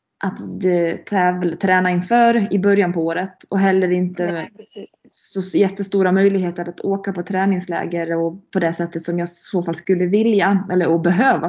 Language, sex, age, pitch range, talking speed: Swedish, female, 20-39, 175-205 Hz, 165 wpm